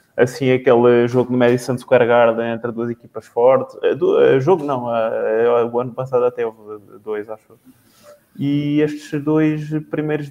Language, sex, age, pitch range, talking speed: Portuguese, male, 20-39, 125-155 Hz, 140 wpm